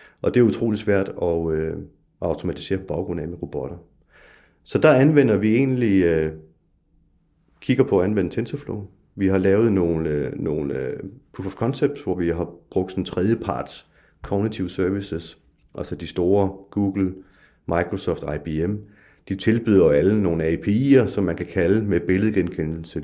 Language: Danish